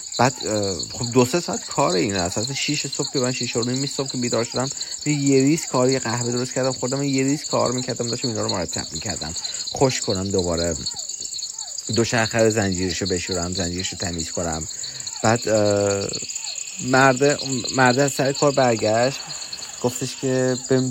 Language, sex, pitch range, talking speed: Persian, male, 105-140 Hz, 150 wpm